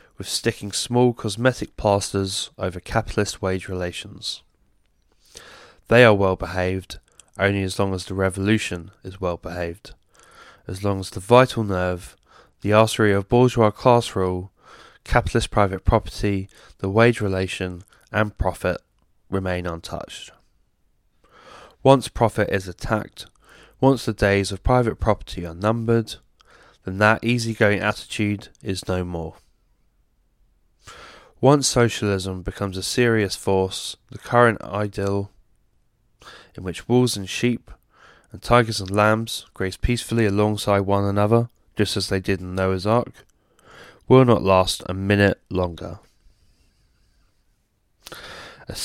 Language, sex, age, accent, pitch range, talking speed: English, male, 20-39, British, 95-115 Hz, 125 wpm